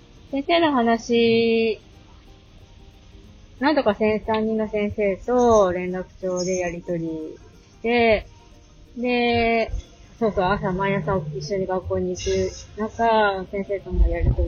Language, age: Japanese, 20-39